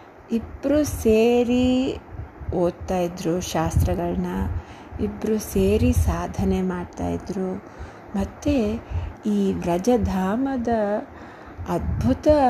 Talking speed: 60 wpm